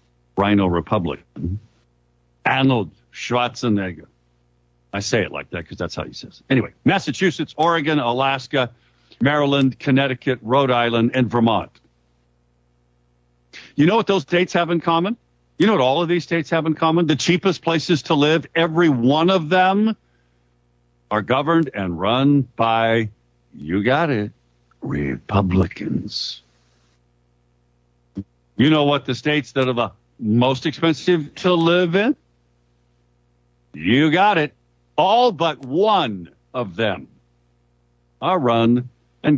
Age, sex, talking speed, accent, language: 60-79, male, 130 wpm, American, English